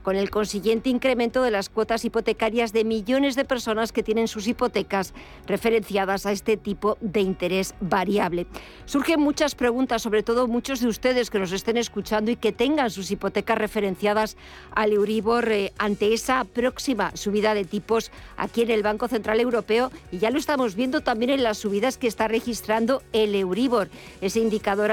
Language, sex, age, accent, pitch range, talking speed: Spanish, female, 50-69, Spanish, 205-245 Hz, 175 wpm